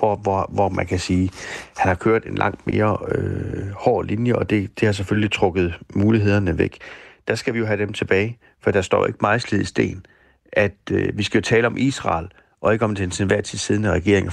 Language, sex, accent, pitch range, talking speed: Danish, male, native, 95-110 Hz, 230 wpm